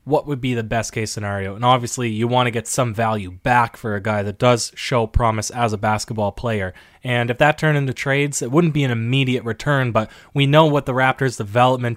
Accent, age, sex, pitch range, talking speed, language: American, 20-39, male, 120-145 Hz, 225 wpm, English